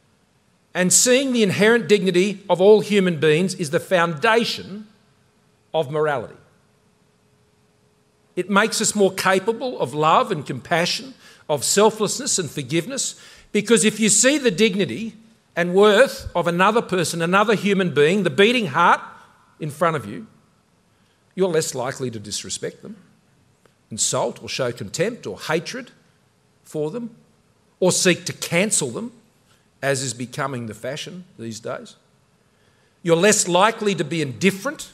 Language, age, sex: English, 50-69, male